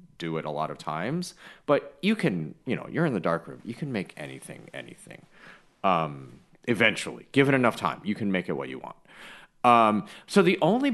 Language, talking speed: English, 205 wpm